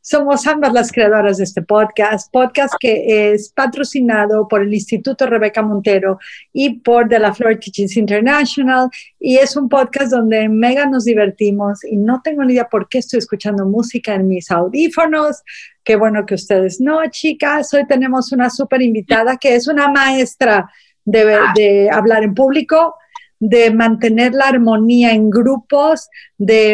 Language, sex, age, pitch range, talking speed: Spanish, female, 50-69, 210-275 Hz, 160 wpm